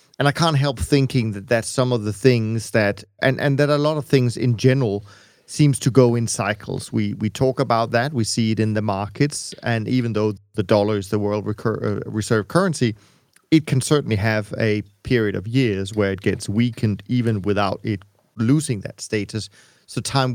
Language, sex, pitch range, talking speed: English, male, 105-130 Hz, 205 wpm